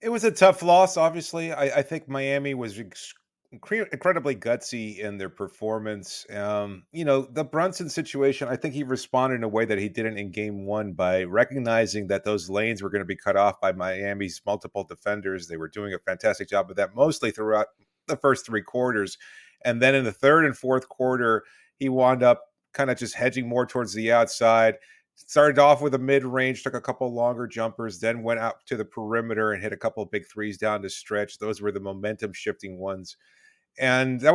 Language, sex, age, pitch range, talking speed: English, male, 30-49, 110-140 Hz, 205 wpm